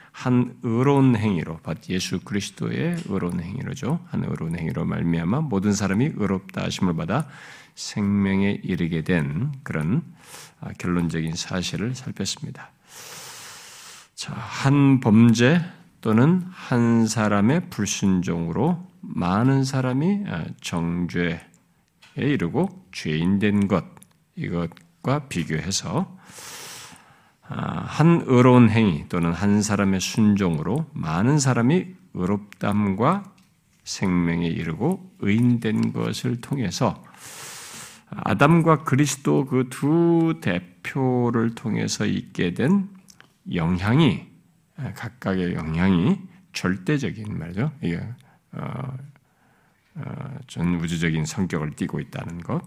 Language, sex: Korean, male